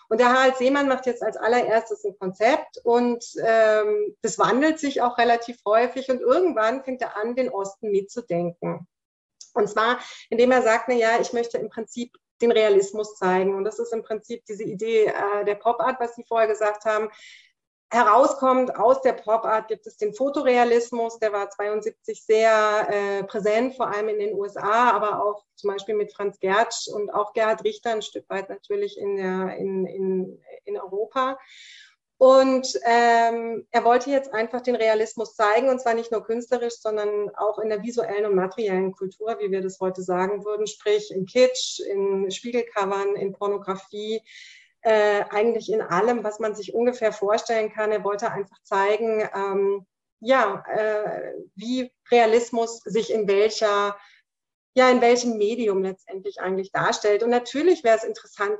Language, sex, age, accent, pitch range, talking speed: German, female, 30-49, German, 205-240 Hz, 165 wpm